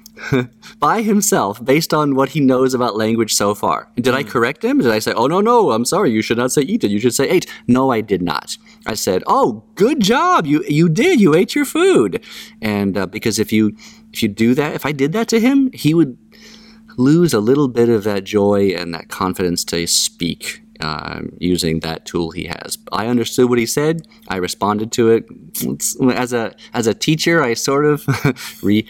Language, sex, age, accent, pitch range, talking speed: English, male, 30-49, American, 95-150 Hz, 210 wpm